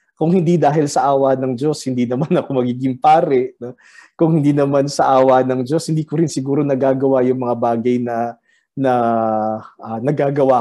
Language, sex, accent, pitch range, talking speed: Filipino, male, native, 130-170 Hz, 175 wpm